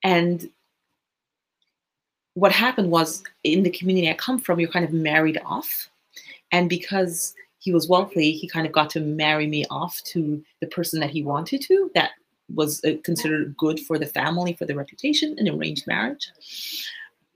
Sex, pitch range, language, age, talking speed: female, 155-200 Hz, English, 30-49, 165 wpm